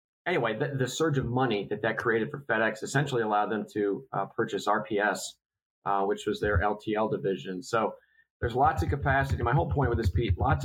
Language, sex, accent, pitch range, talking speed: English, male, American, 105-130 Hz, 205 wpm